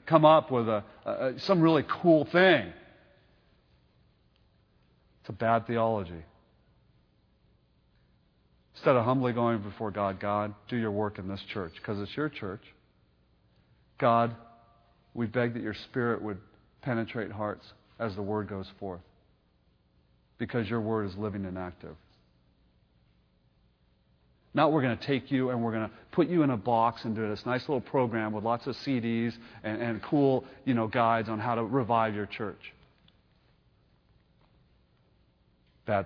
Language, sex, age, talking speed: English, male, 40-59, 150 wpm